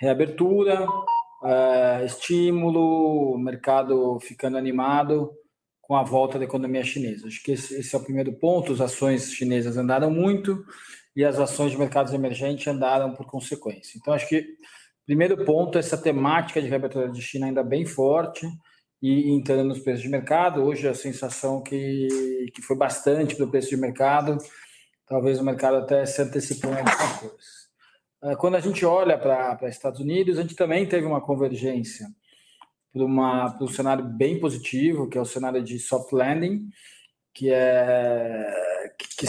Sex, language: male, Portuguese